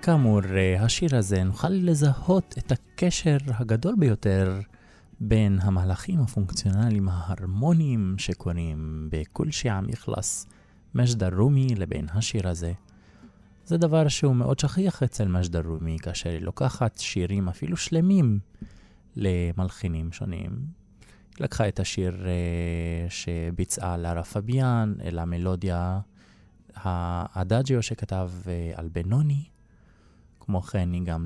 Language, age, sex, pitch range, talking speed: Hebrew, 20-39, male, 90-125 Hz, 105 wpm